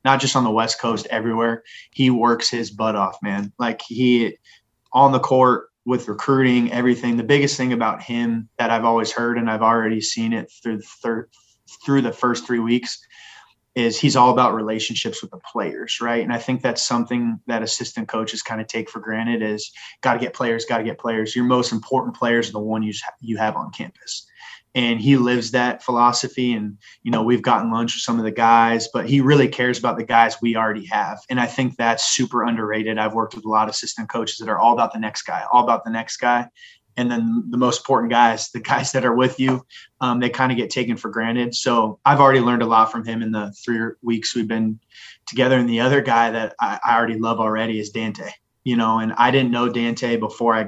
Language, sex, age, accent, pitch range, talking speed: English, male, 20-39, American, 115-125 Hz, 230 wpm